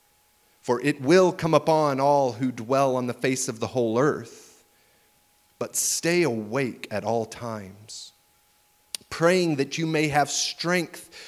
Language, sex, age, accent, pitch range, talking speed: English, male, 30-49, American, 100-140 Hz, 145 wpm